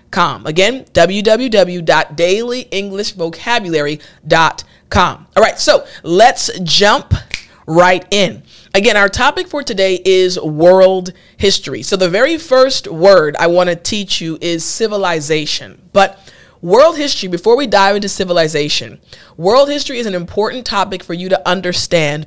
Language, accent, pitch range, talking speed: English, American, 165-200 Hz, 125 wpm